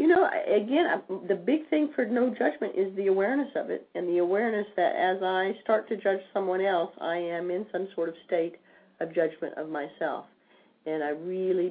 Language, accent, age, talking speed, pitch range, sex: English, American, 40-59, 200 wpm, 155-190 Hz, female